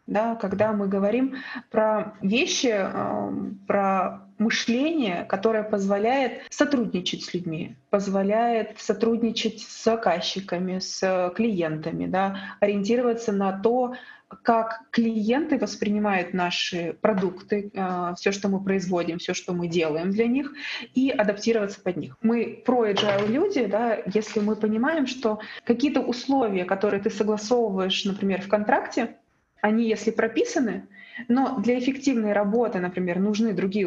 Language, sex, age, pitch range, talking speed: English, female, 20-39, 195-235 Hz, 125 wpm